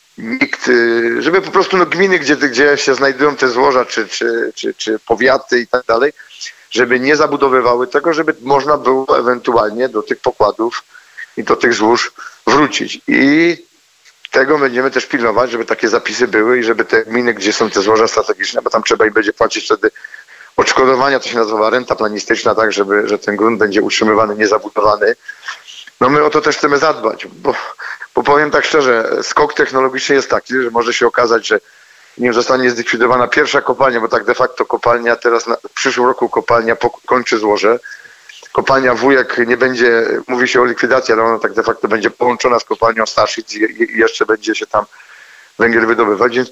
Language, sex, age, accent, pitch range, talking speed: Polish, male, 40-59, native, 115-190 Hz, 180 wpm